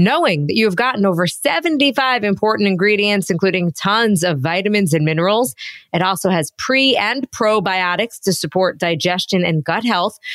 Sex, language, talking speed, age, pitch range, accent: female, English, 155 wpm, 20-39, 185-235 Hz, American